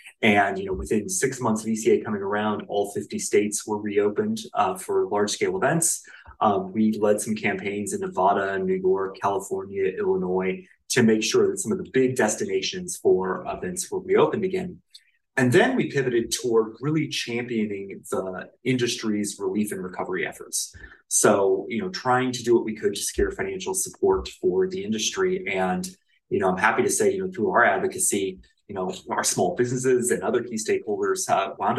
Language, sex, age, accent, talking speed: English, male, 30-49, American, 180 wpm